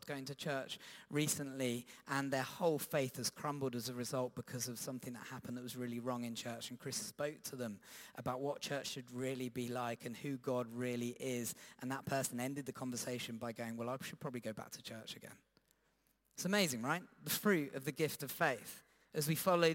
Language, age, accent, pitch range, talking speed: English, 30-49, British, 130-170 Hz, 215 wpm